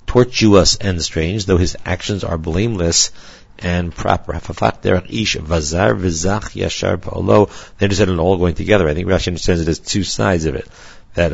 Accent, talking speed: American, 145 wpm